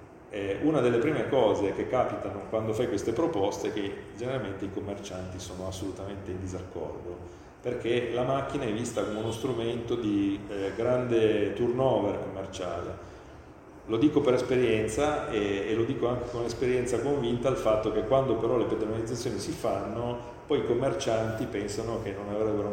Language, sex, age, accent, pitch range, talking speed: Italian, male, 40-59, native, 100-125 Hz, 160 wpm